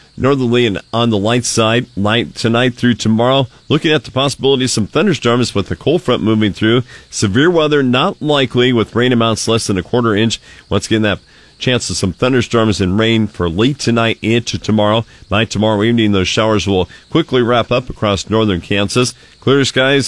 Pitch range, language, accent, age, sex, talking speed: 105-130 Hz, English, American, 40-59, male, 190 wpm